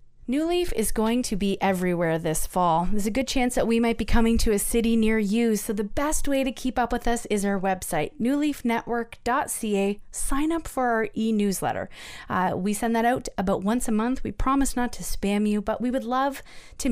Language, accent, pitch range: English, American, 200-240 Hz